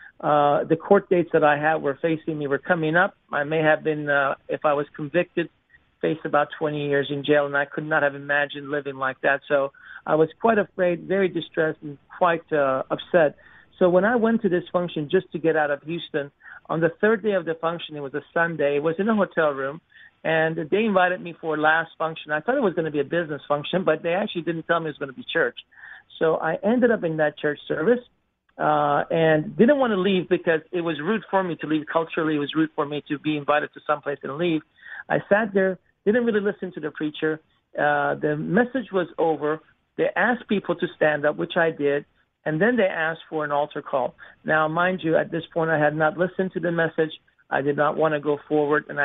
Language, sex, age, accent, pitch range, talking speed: English, male, 50-69, American, 150-180 Hz, 235 wpm